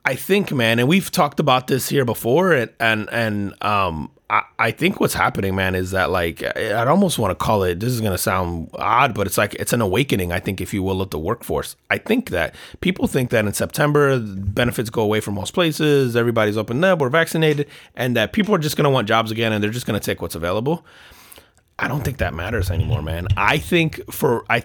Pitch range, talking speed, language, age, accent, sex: 100-130 Hz, 235 wpm, English, 30-49, American, male